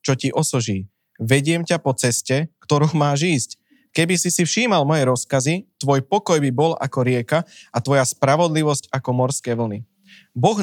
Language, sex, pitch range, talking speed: Slovak, male, 120-155 Hz, 165 wpm